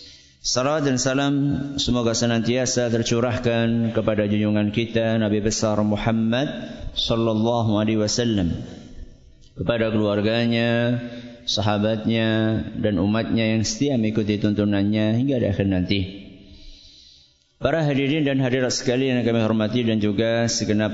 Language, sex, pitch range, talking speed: Malay, male, 100-115 Hz, 110 wpm